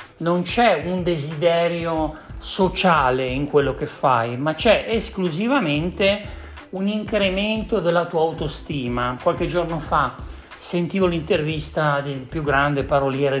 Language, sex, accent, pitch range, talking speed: Italian, male, native, 135-180 Hz, 115 wpm